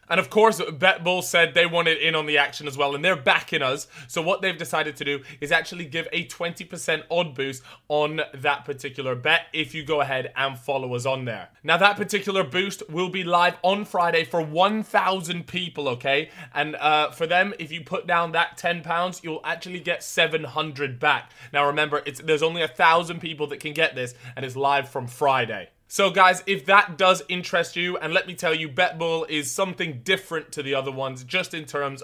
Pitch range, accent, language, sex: 140-175 Hz, British, English, male